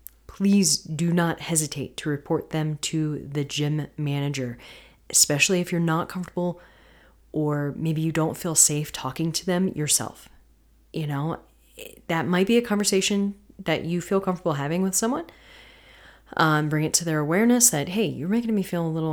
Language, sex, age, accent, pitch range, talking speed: English, female, 30-49, American, 140-175 Hz, 170 wpm